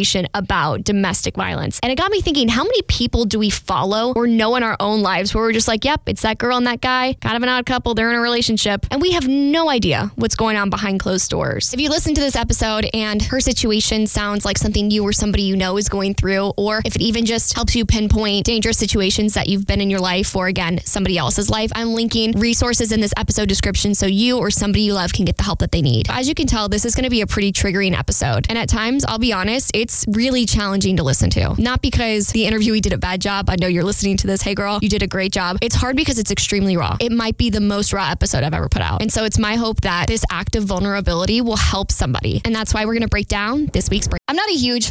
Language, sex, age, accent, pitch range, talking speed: English, female, 10-29, American, 200-250 Hz, 270 wpm